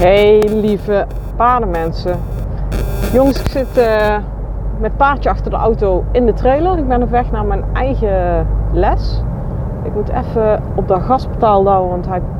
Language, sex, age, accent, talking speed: Dutch, female, 40-59, Dutch, 160 wpm